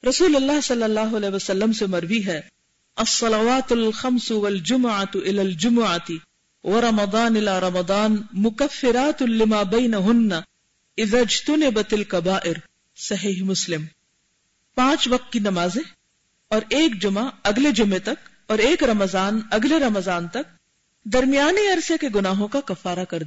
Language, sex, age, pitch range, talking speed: Urdu, female, 50-69, 195-260 Hz, 95 wpm